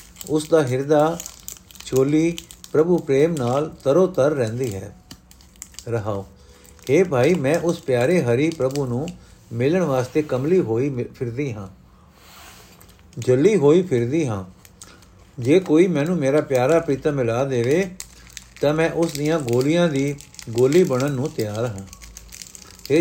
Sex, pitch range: male, 115-160 Hz